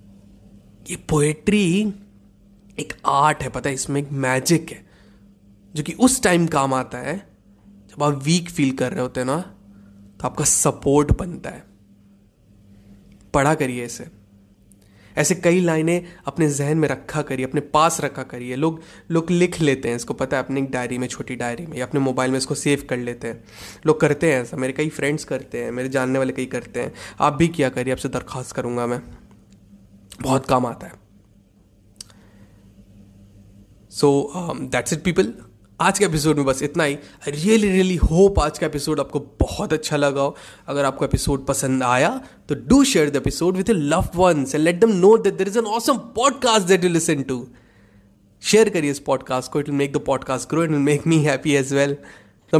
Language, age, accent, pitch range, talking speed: Hindi, 20-39, native, 115-155 Hz, 185 wpm